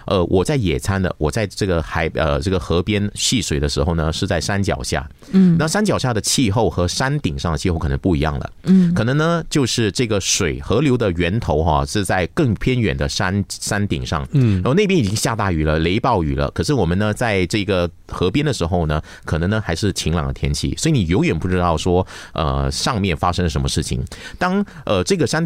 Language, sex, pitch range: Chinese, male, 80-115 Hz